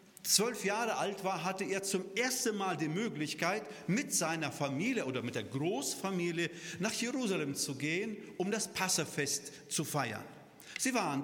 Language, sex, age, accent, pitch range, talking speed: German, male, 40-59, German, 160-215 Hz, 155 wpm